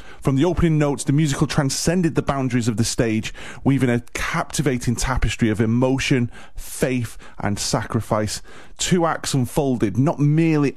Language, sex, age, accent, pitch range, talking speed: English, male, 30-49, British, 105-135 Hz, 145 wpm